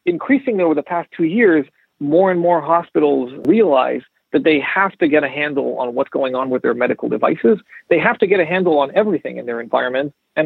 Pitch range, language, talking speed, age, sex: 145-195 Hz, English, 220 wpm, 40-59, male